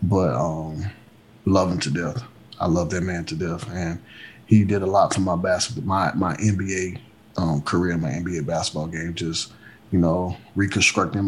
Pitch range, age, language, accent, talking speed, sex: 85-105 Hz, 30-49, English, American, 175 wpm, male